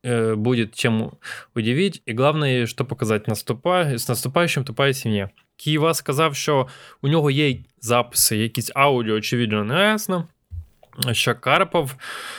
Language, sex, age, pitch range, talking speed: Ukrainian, male, 20-39, 115-145 Hz, 115 wpm